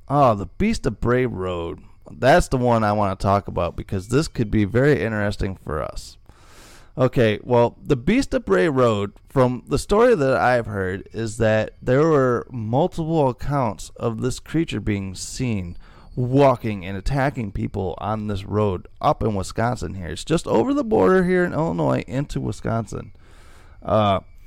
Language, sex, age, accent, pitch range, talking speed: English, male, 30-49, American, 100-130 Hz, 165 wpm